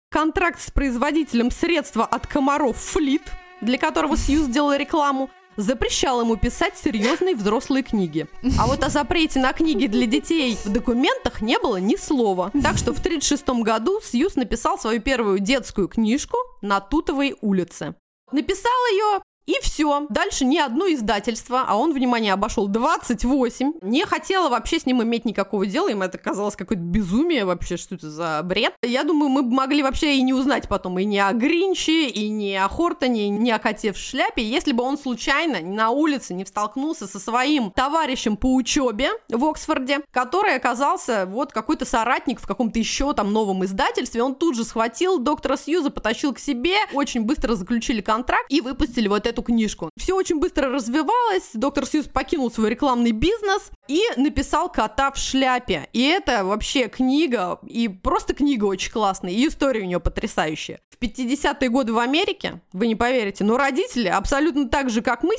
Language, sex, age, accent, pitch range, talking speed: Russian, female, 20-39, native, 225-305 Hz, 175 wpm